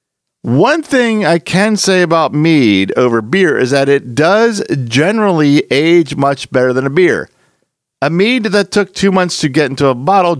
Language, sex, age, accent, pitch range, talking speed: English, male, 40-59, American, 115-185 Hz, 180 wpm